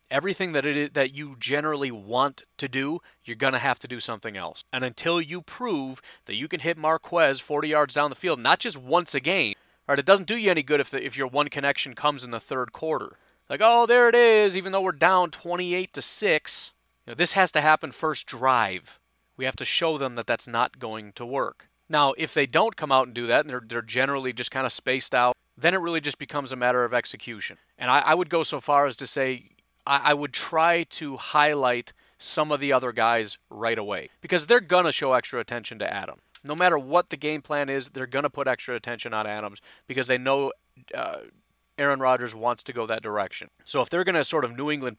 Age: 30-49